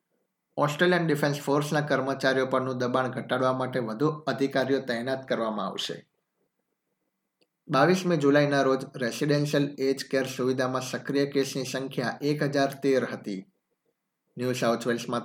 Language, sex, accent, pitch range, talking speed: Gujarati, male, native, 125-145 Hz, 110 wpm